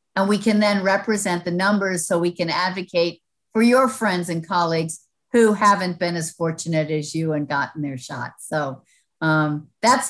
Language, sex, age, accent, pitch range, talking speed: English, female, 50-69, American, 170-205 Hz, 180 wpm